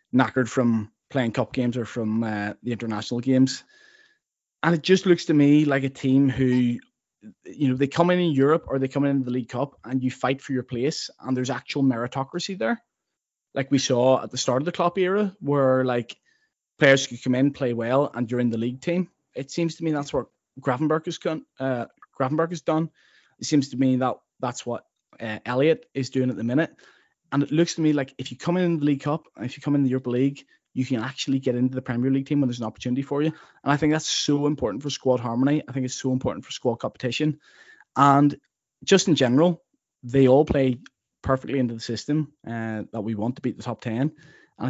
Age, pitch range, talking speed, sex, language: 20-39, 125-145 Hz, 225 wpm, male, English